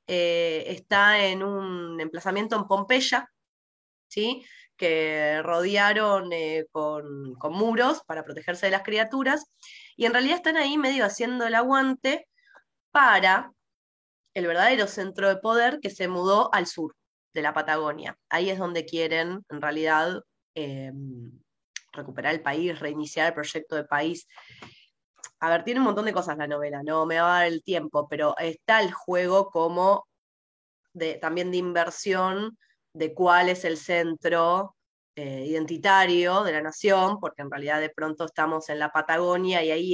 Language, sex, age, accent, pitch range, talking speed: Spanish, female, 20-39, Argentinian, 155-200 Hz, 150 wpm